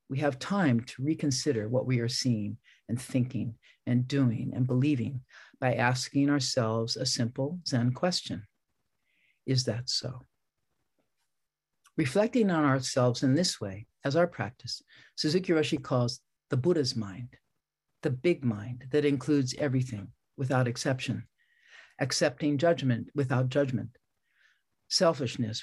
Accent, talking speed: American, 125 wpm